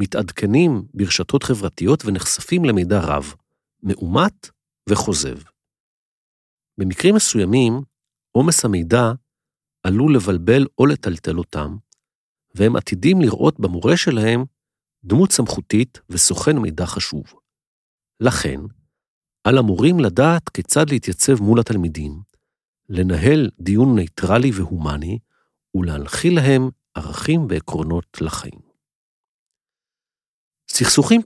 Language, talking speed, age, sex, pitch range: Hebrew, 85 wpm, 50-69, male, 90-135 Hz